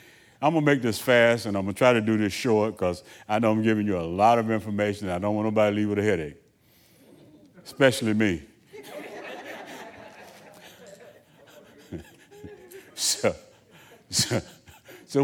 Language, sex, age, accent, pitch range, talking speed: English, male, 60-79, American, 110-150 Hz, 150 wpm